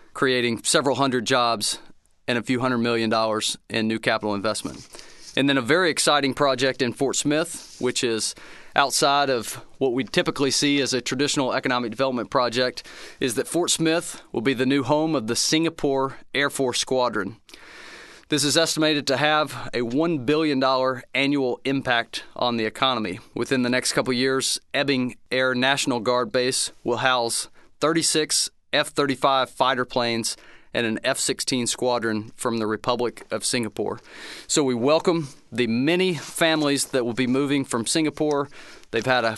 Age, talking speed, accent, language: 30-49, 165 wpm, American, English